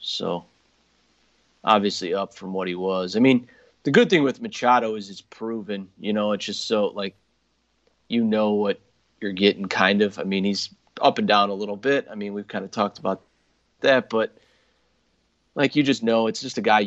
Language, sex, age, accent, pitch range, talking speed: English, male, 30-49, American, 100-120 Hz, 200 wpm